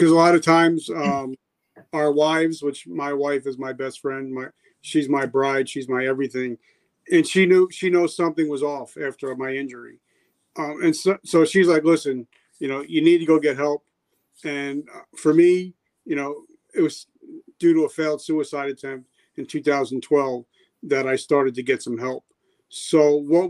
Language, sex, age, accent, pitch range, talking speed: English, male, 40-59, American, 140-175 Hz, 185 wpm